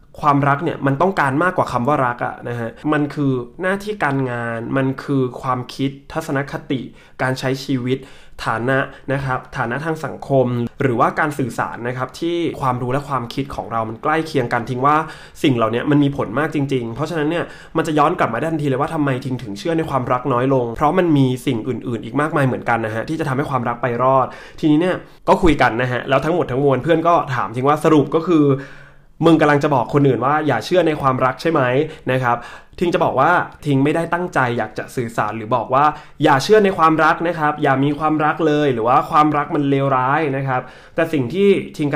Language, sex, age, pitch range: Thai, male, 20-39, 130-155 Hz